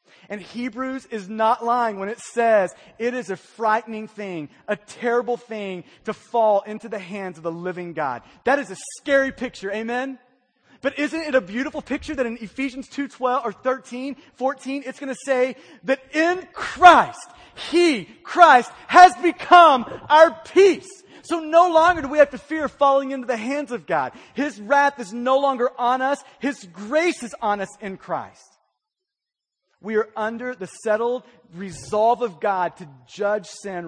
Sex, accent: male, American